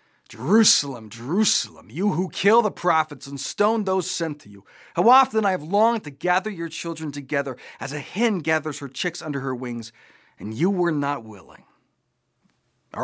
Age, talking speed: 40-59, 175 wpm